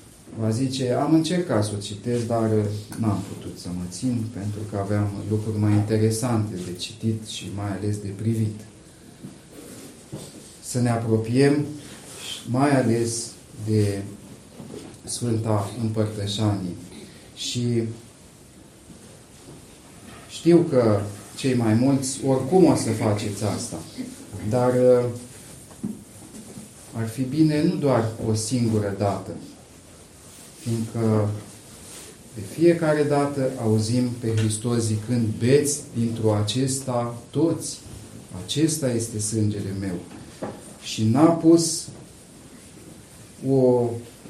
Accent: native